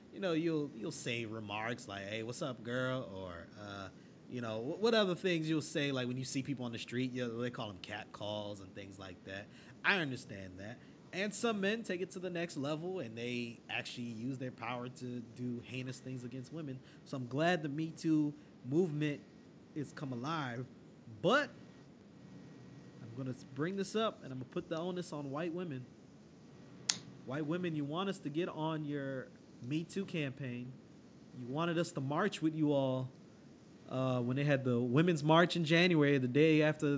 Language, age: English, 20-39